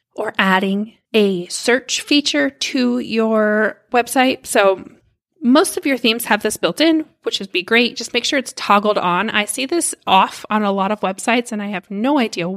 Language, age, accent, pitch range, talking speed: English, 20-39, American, 205-250 Hz, 195 wpm